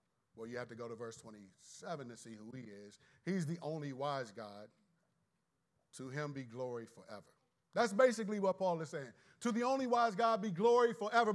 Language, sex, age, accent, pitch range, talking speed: English, male, 40-59, American, 125-185 Hz, 195 wpm